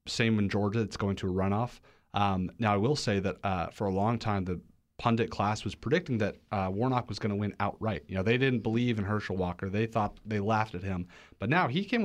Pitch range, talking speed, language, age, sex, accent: 95-115 Hz, 250 wpm, English, 30-49, male, American